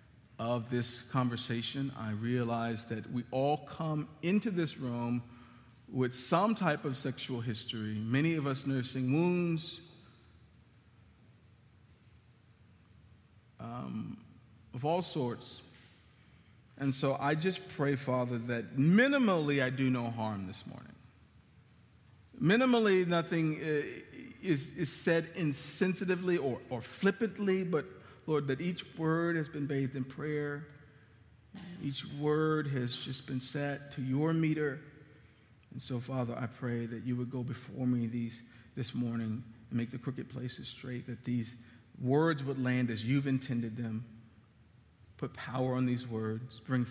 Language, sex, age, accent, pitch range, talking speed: English, male, 50-69, American, 115-145 Hz, 130 wpm